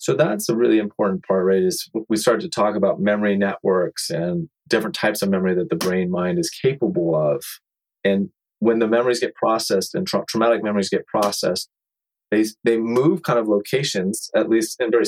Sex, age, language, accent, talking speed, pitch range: male, 30-49, English, American, 190 wpm, 100-115 Hz